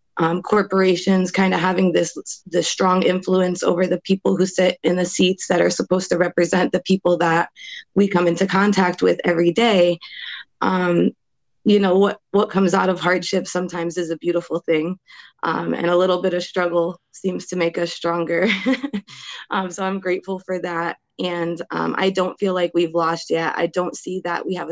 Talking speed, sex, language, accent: 190 wpm, female, English, American